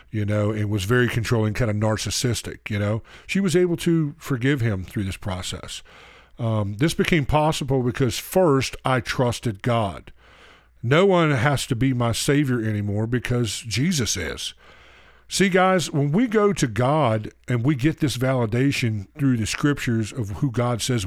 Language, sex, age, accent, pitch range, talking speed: English, male, 50-69, American, 105-150 Hz, 170 wpm